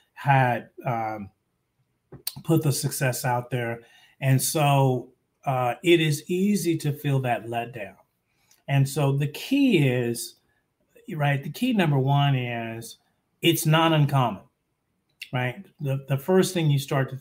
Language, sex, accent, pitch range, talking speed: English, male, American, 130-155 Hz, 135 wpm